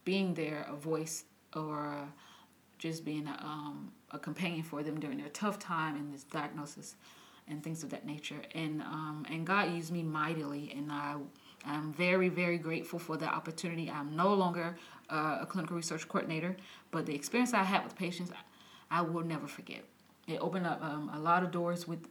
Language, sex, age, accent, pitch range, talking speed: English, female, 30-49, American, 155-180 Hz, 185 wpm